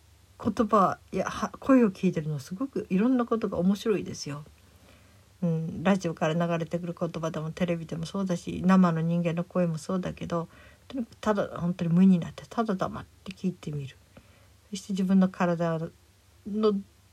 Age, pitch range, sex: 50-69, 150-205 Hz, female